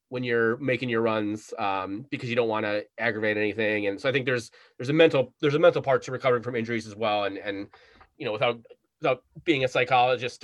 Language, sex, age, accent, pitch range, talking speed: English, male, 30-49, American, 115-165 Hz, 230 wpm